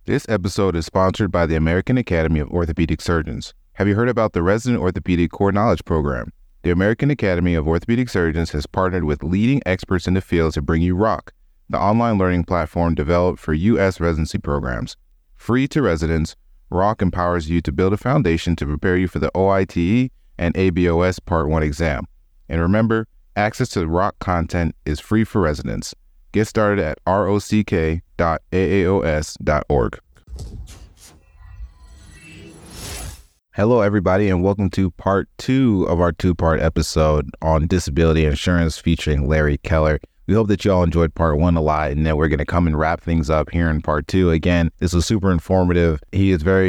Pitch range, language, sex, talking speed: 80-95 Hz, English, male, 170 wpm